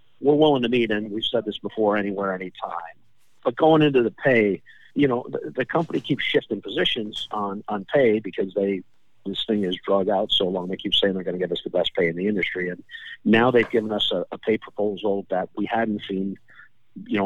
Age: 50-69